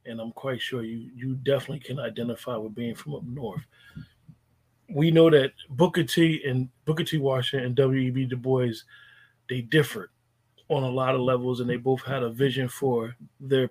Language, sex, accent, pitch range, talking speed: English, male, American, 125-155 Hz, 185 wpm